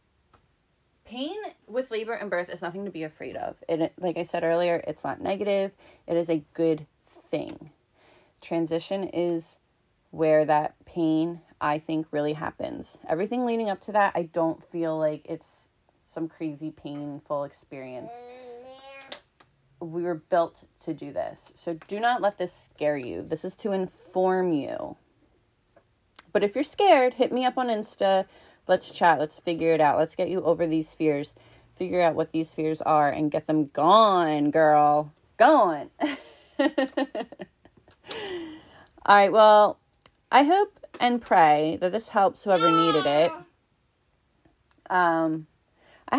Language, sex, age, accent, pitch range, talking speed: English, female, 30-49, American, 155-215 Hz, 145 wpm